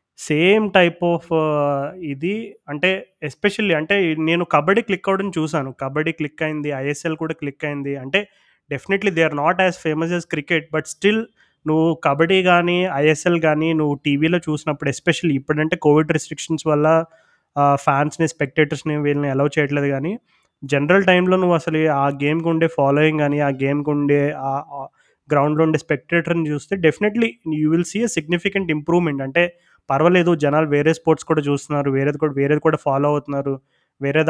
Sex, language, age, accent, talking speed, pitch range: male, Telugu, 20-39, native, 145 wpm, 145-175 Hz